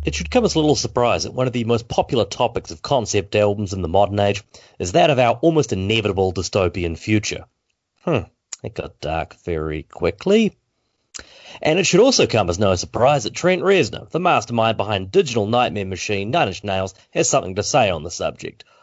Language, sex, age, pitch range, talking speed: English, male, 30-49, 100-135 Hz, 200 wpm